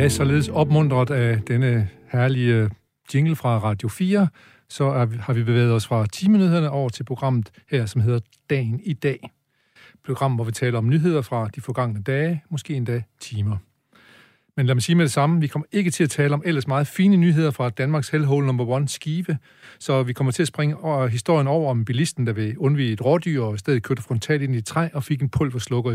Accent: native